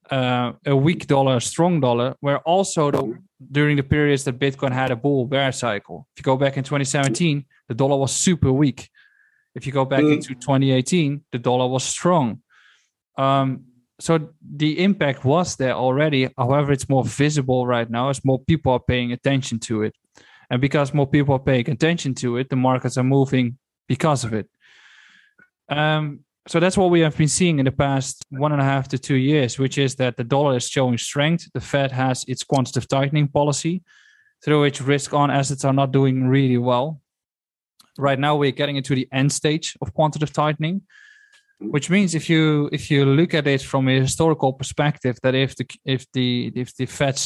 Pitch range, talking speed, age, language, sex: 130-150 Hz, 195 wpm, 20-39, English, male